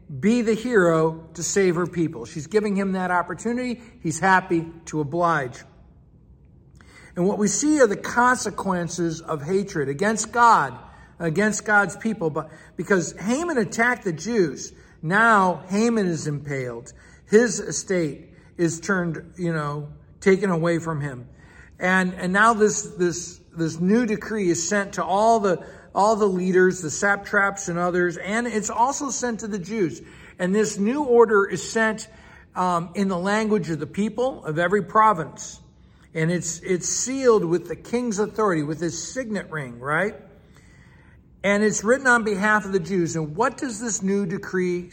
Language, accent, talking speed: English, American, 160 wpm